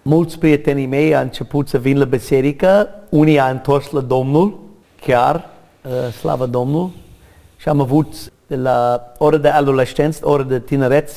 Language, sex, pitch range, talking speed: Romanian, male, 140-200 Hz, 150 wpm